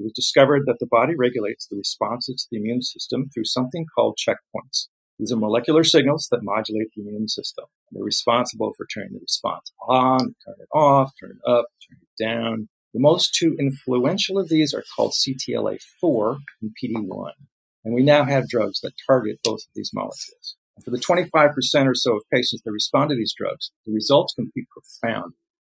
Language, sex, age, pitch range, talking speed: English, male, 40-59, 120-155 Hz, 190 wpm